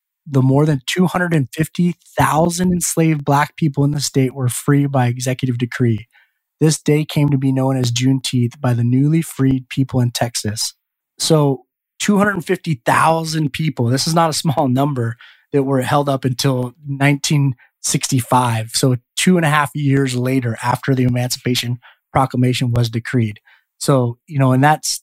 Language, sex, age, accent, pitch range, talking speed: English, male, 20-39, American, 125-145 Hz, 150 wpm